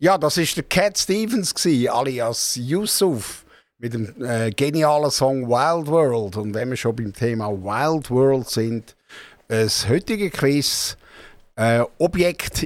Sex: male